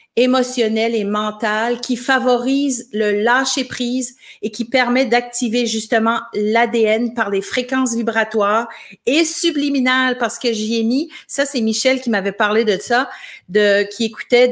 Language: French